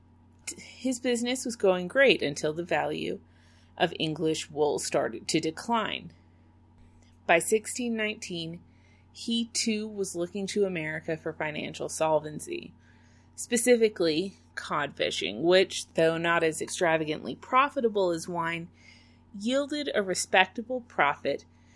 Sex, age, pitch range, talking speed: female, 30-49, 150-230 Hz, 110 wpm